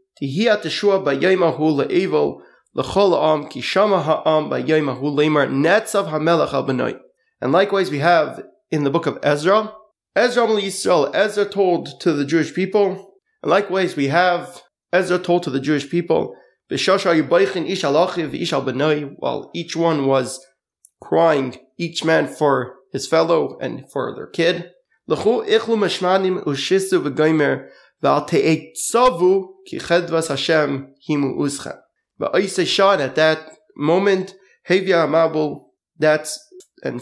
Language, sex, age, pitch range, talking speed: English, male, 30-49, 150-190 Hz, 95 wpm